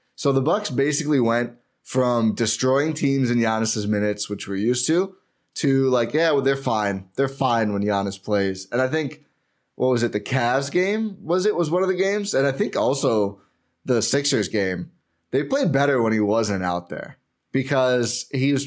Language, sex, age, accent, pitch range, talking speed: English, male, 20-39, American, 110-140 Hz, 195 wpm